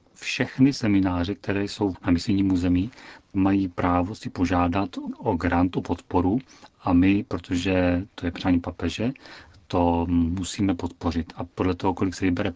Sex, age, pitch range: male, 40-59, 85-95 Hz